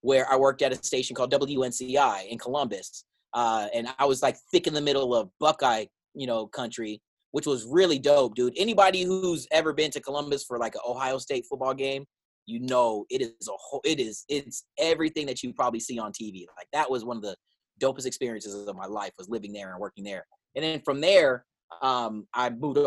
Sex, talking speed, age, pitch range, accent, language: male, 215 wpm, 30-49, 120-155 Hz, American, English